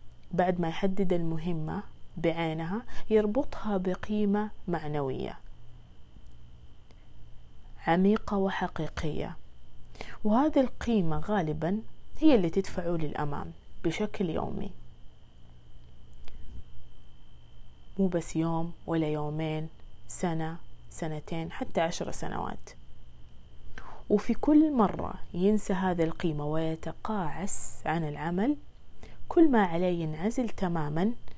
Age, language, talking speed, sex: 20-39, Arabic, 80 wpm, female